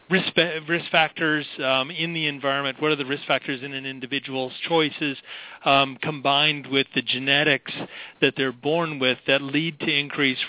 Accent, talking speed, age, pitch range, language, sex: American, 165 wpm, 40-59, 135-155 Hz, English, male